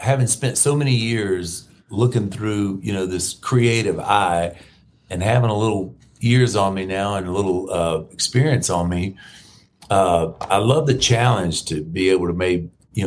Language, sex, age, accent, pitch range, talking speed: English, male, 50-69, American, 95-115 Hz, 175 wpm